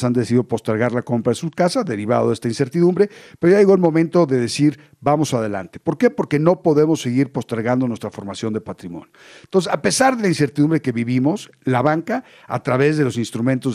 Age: 50-69